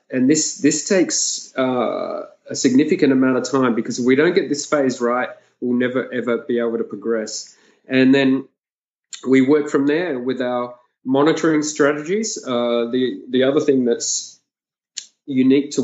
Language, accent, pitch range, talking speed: English, Australian, 115-135 Hz, 165 wpm